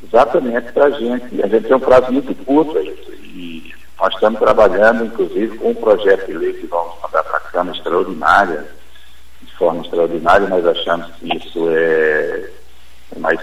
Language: Portuguese